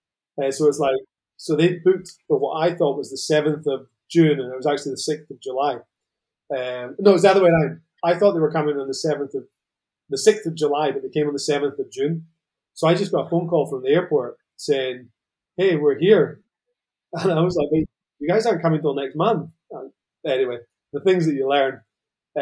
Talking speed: 230 wpm